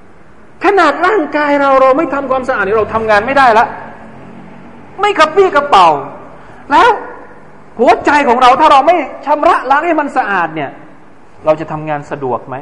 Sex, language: male, Thai